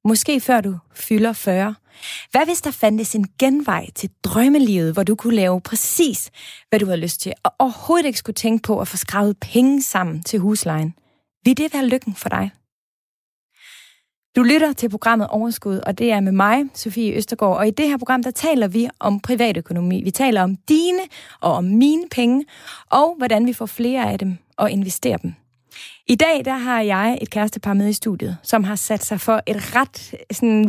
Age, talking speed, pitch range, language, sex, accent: 30-49, 200 wpm, 195-250 Hz, Danish, female, native